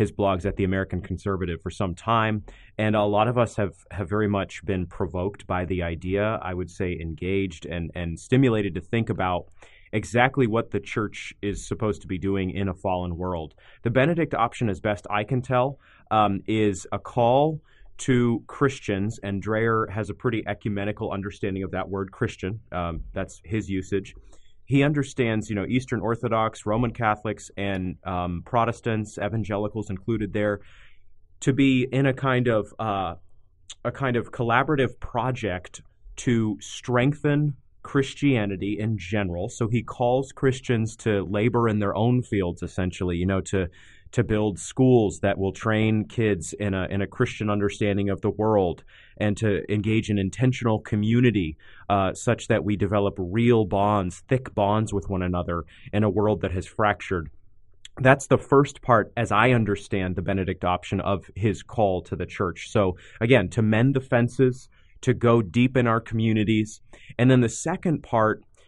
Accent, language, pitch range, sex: American, English, 95-120 Hz, male